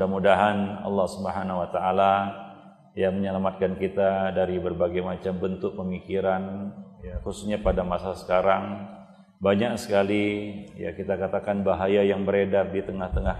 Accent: native